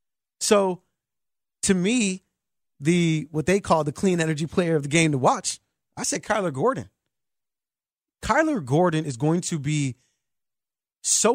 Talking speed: 145 wpm